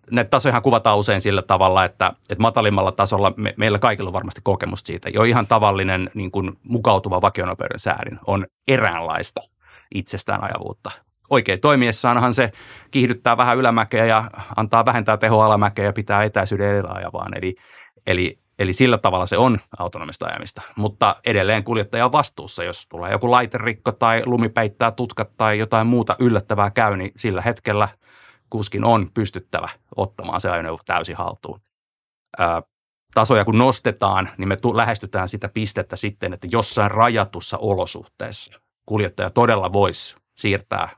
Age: 30-49